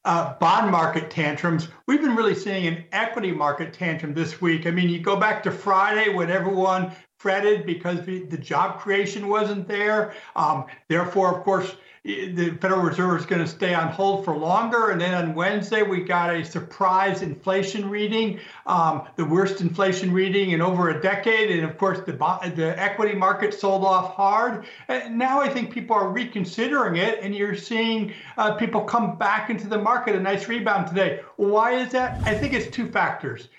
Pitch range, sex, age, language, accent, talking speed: 185-225 Hz, male, 60-79, English, American, 190 wpm